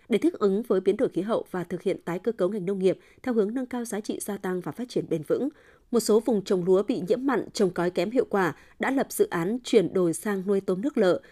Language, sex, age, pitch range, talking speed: Vietnamese, female, 20-39, 185-245 Hz, 285 wpm